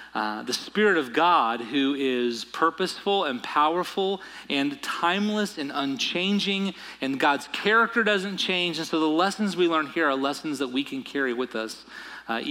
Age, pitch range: 30-49, 130-180 Hz